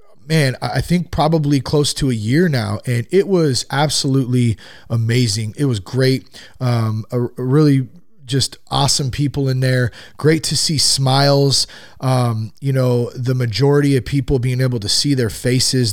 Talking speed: 155 wpm